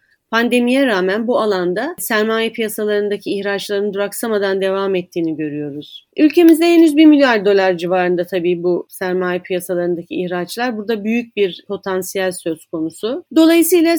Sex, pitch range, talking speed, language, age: female, 185-245 Hz, 125 wpm, Turkish, 30-49